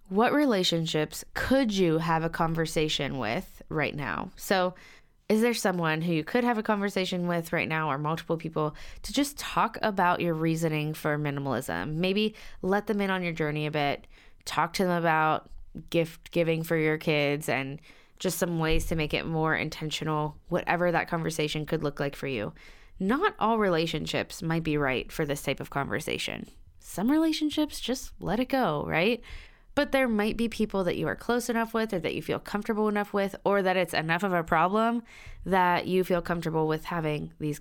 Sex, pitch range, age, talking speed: female, 160-205 Hz, 20-39, 190 wpm